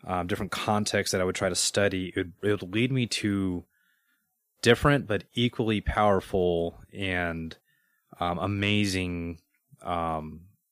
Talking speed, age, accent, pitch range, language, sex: 130 wpm, 30-49, American, 90-110 Hz, English, male